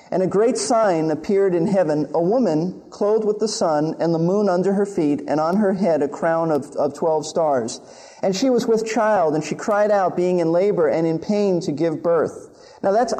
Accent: American